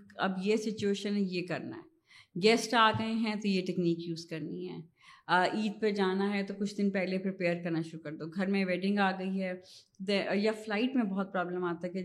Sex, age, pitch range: female, 20-39, 175-210 Hz